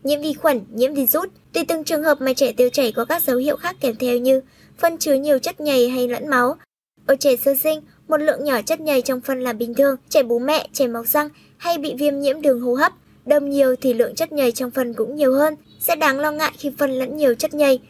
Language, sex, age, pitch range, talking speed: Vietnamese, male, 10-29, 245-295 Hz, 260 wpm